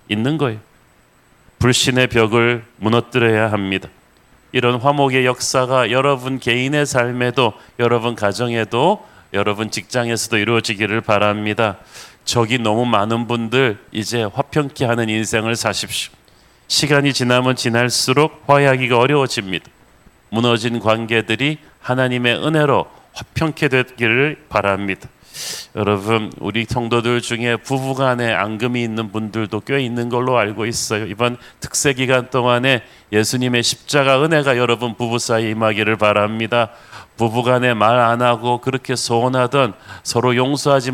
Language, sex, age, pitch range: Korean, male, 40-59, 110-130 Hz